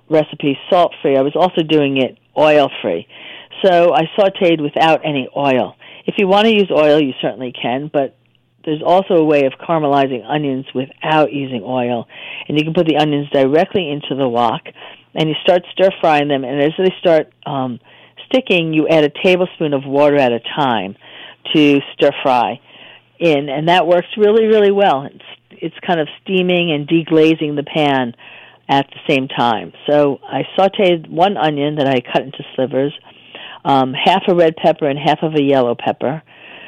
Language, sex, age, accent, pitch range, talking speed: English, female, 50-69, American, 135-165 Hz, 175 wpm